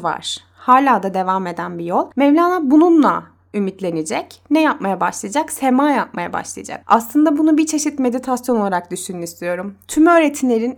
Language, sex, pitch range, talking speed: Turkish, female, 215-295 Hz, 145 wpm